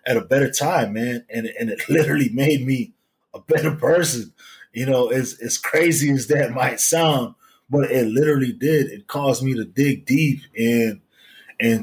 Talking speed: 170 wpm